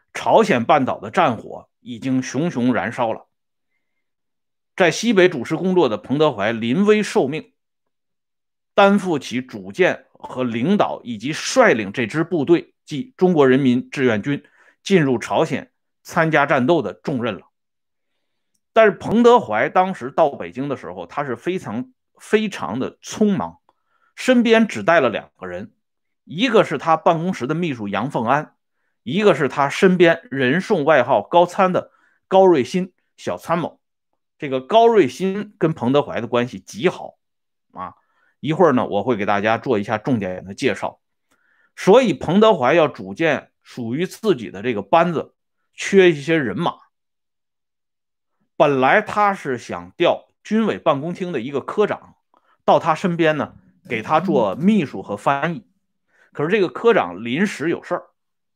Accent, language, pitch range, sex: Chinese, Swedish, 130-200 Hz, male